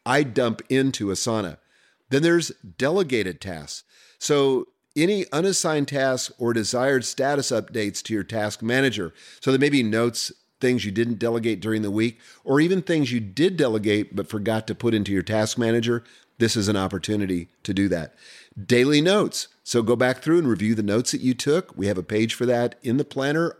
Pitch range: 105-135 Hz